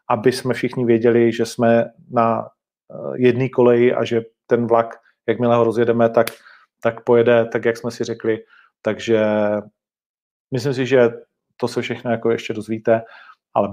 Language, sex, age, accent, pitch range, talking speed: Czech, male, 40-59, native, 115-140 Hz, 155 wpm